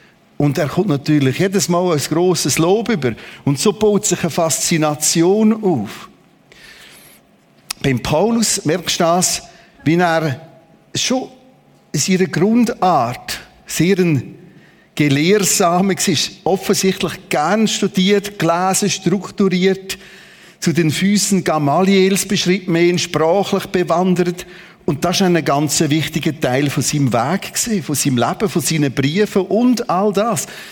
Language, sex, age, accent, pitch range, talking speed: German, male, 50-69, Austrian, 160-200 Hz, 120 wpm